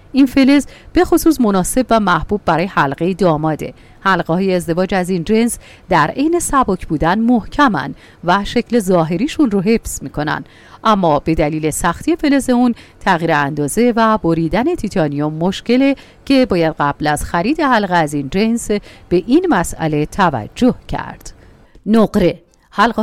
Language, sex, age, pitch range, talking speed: Persian, female, 40-59, 160-245 Hz, 145 wpm